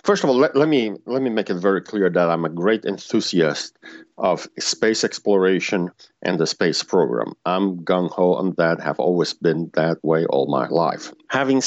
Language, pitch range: English, 90-120 Hz